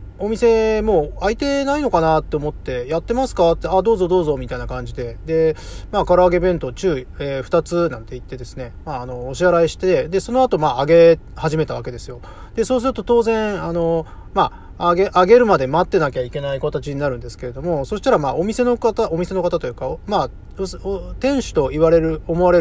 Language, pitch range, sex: Japanese, 140-190 Hz, male